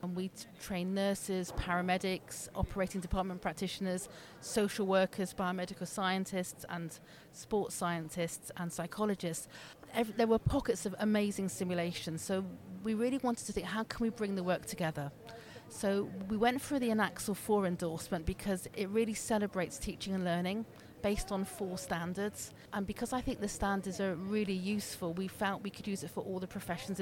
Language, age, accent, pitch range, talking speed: English, 40-59, British, 180-210 Hz, 165 wpm